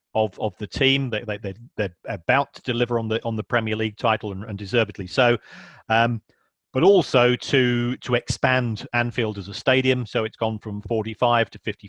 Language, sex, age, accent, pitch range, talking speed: English, male, 40-59, British, 110-130 Hz, 200 wpm